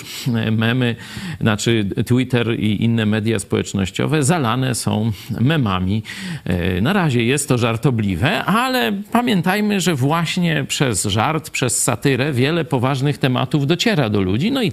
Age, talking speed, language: 50-69, 125 wpm, Polish